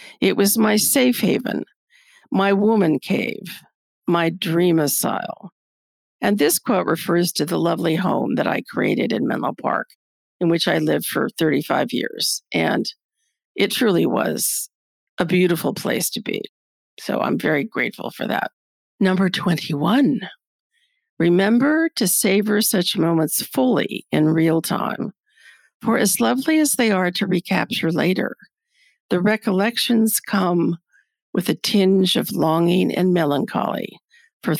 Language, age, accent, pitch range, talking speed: English, 50-69, American, 170-245 Hz, 135 wpm